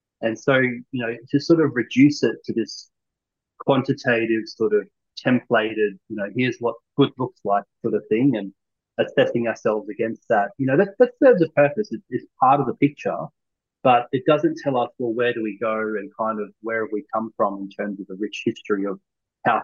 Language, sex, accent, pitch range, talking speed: English, male, Australian, 105-135 Hz, 210 wpm